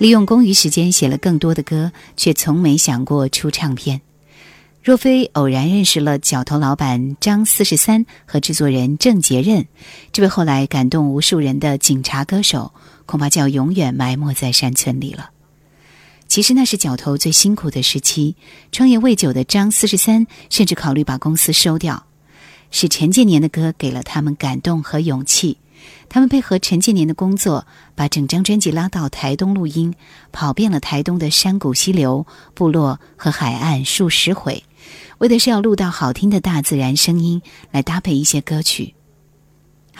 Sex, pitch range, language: female, 145-185 Hz, Chinese